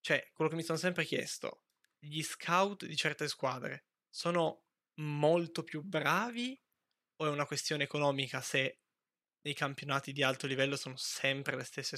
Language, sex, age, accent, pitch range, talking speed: Italian, male, 20-39, native, 135-155 Hz, 155 wpm